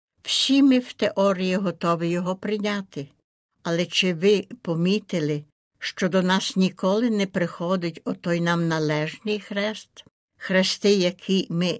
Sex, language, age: female, Ukrainian, 60-79